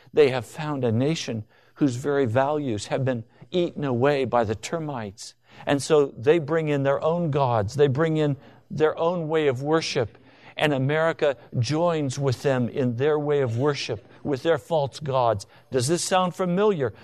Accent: American